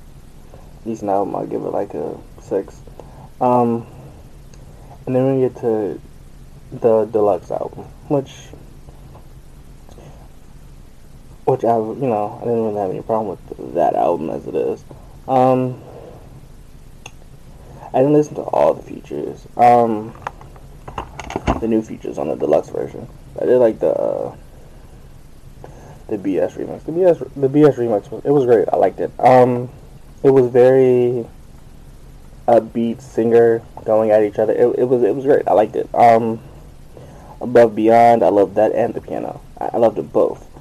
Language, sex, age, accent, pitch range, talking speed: English, male, 20-39, American, 115-130 Hz, 150 wpm